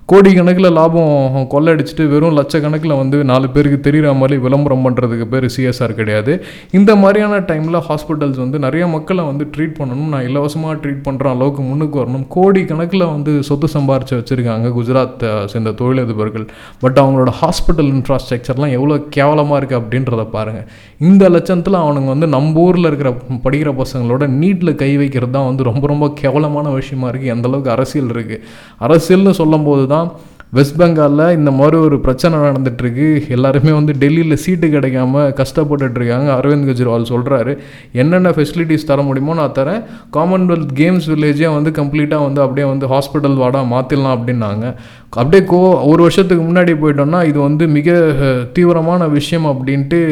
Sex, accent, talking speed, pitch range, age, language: male, native, 145 wpm, 130-160 Hz, 20-39, Tamil